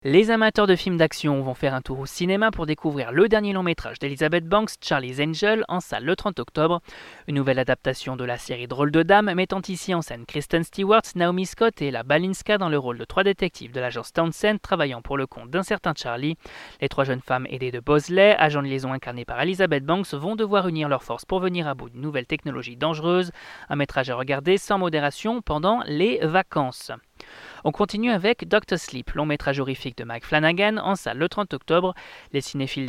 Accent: French